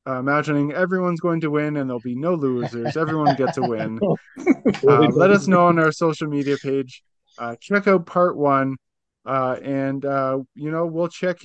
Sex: male